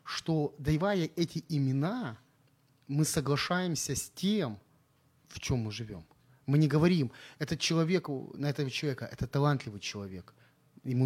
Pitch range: 125-160 Hz